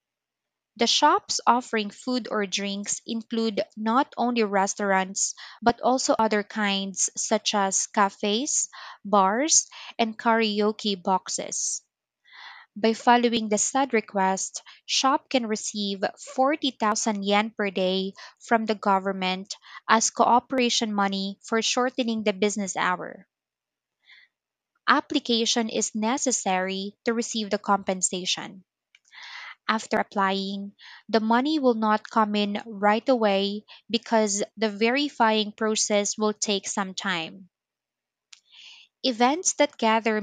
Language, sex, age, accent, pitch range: Japanese, female, 20-39, Filipino, 200-240 Hz